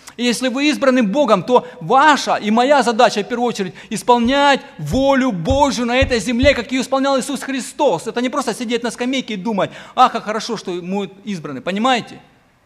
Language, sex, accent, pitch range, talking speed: Ukrainian, male, native, 195-250 Hz, 175 wpm